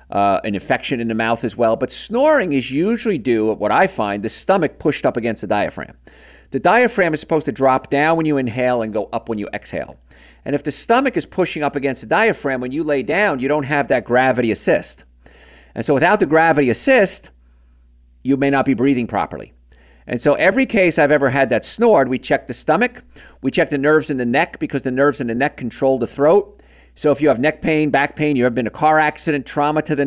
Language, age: English, 50-69